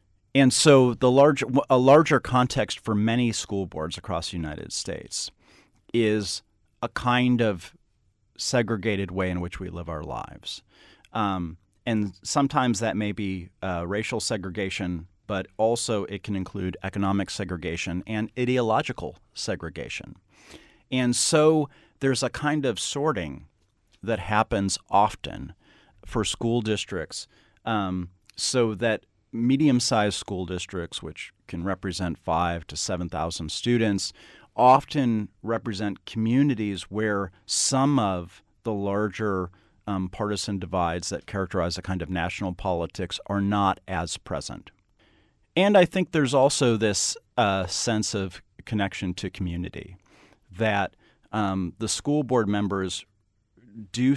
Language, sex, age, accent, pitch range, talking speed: English, male, 40-59, American, 95-115 Hz, 125 wpm